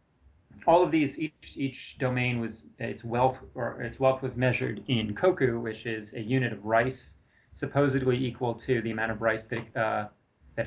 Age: 30-49